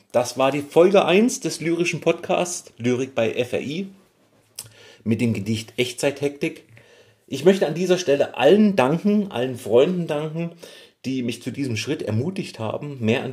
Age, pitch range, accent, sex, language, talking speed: 30-49, 110-140 Hz, German, male, German, 155 wpm